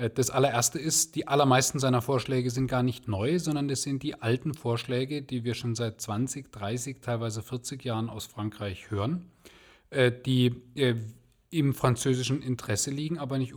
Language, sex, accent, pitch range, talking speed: German, male, German, 125-160 Hz, 160 wpm